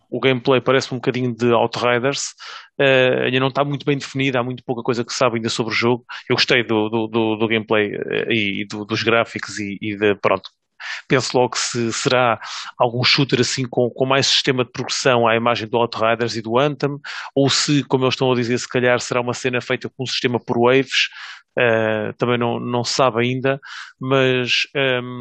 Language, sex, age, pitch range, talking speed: English, male, 30-49, 115-130 Hz, 205 wpm